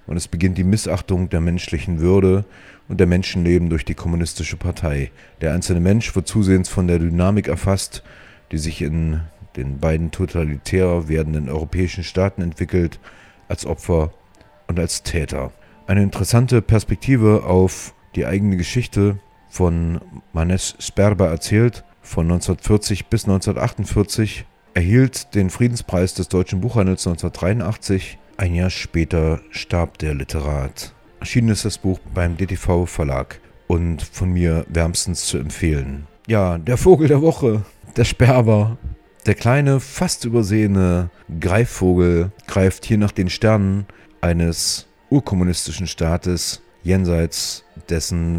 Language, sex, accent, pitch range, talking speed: German, male, German, 85-100 Hz, 125 wpm